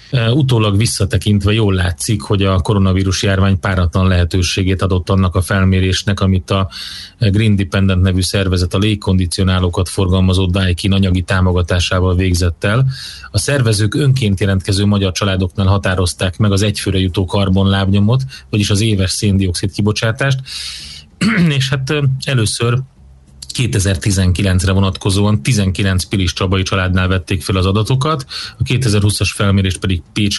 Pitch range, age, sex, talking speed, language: 95-105 Hz, 30-49, male, 125 wpm, Hungarian